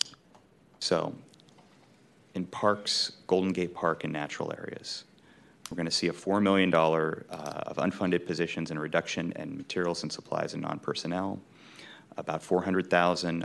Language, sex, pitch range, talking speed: English, male, 85-95 Hz, 130 wpm